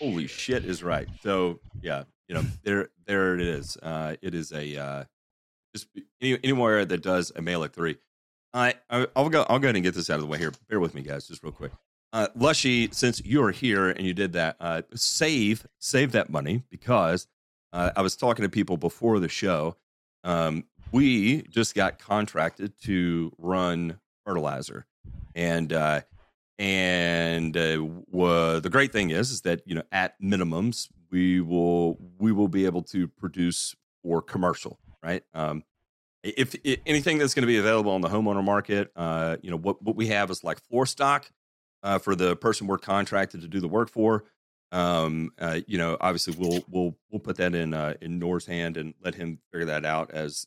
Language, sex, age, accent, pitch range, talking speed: English, male, 30-49, American, 85-105 Hz, 195 wpm